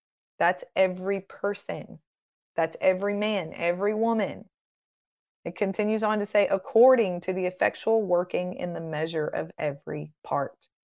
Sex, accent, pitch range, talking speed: female, American, 180-230 Hz, 135 wpm